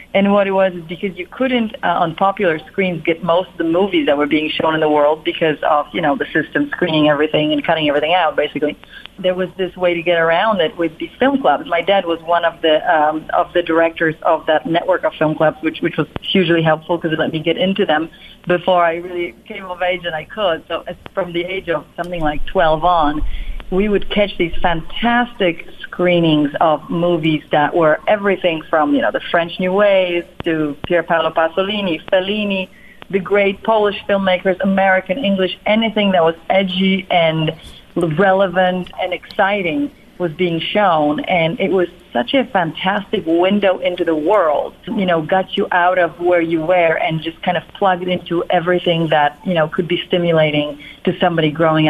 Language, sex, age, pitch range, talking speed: English, female, 40-59, 160-190 Hz, 195 wpm